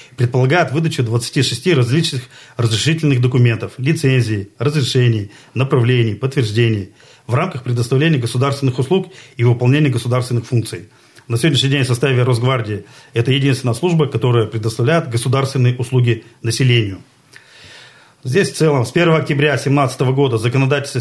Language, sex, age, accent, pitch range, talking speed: Russian, male, 40-59, native, 120-145 Hz, 120 wpm